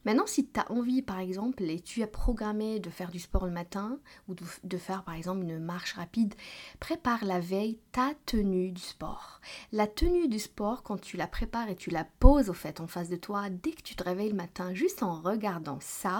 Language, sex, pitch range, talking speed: French, female, 185-240 Hz, 225 wpm